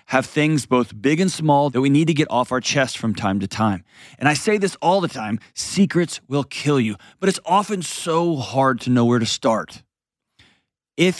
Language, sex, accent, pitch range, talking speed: English, male, American, 125-165 Hz, 215 wpm